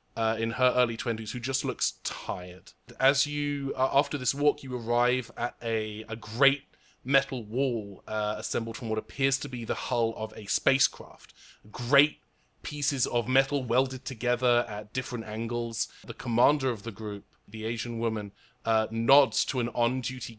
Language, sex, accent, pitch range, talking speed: English, male, British, 110-140 Hz, 170 wpm